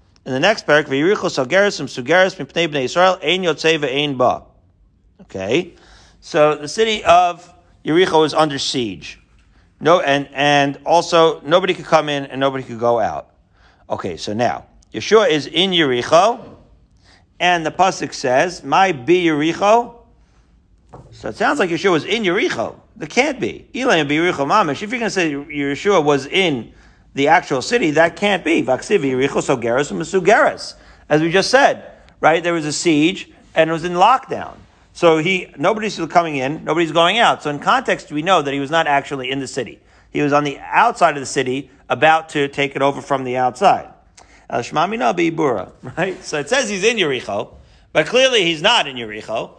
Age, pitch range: 40-59, 140-185 Hz